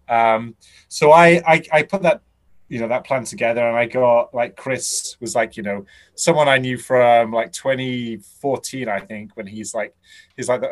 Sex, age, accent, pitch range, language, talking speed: male, 30-49, British, 100-125 Hz, English, 195 wpm